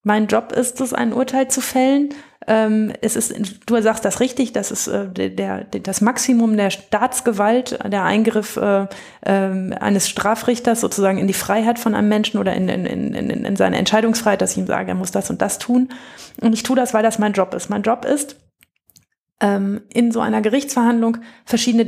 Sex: female